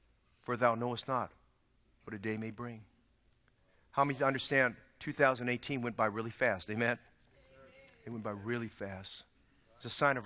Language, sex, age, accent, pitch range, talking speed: English, male, 50-69, American, 105-155 Hz, 160 wpm